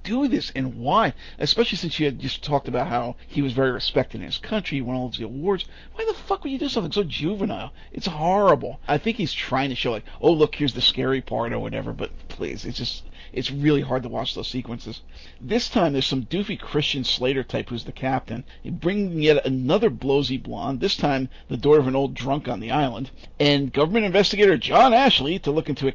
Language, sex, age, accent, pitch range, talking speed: English, male, 50-69, American, 130-170 Hz, 225 wpm